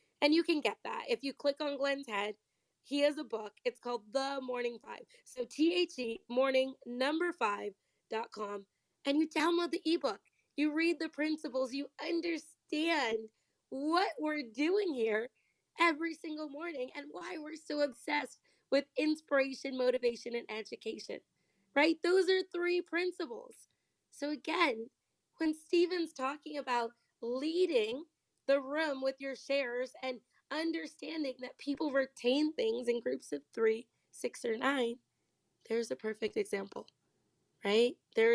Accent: American